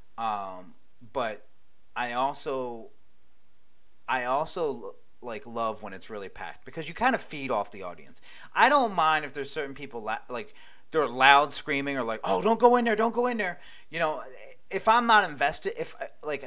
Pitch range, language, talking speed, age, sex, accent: 120-160 Hz, English, 180 wpm, 30-49, male, American